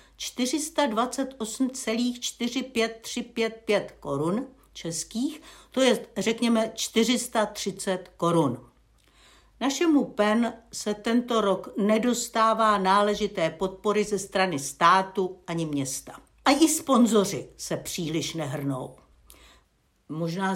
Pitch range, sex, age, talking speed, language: 190-265 Hz, female, 60-79, 80 wpm, Czech